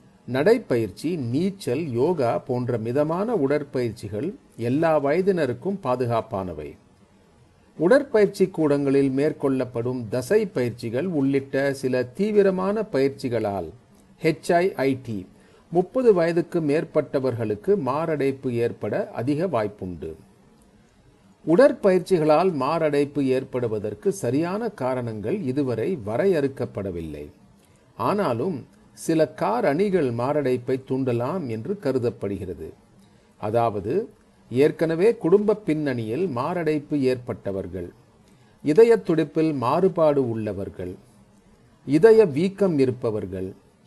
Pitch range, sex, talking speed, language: 120-175 Hz, male, 65 wpm, Tamil